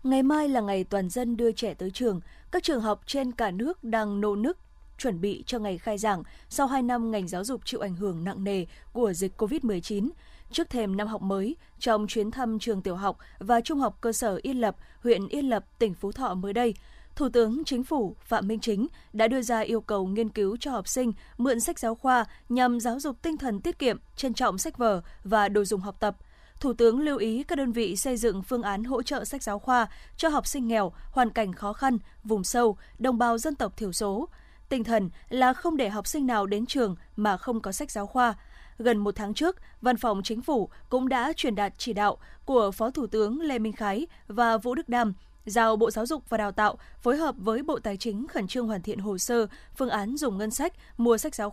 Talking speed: 235 wpm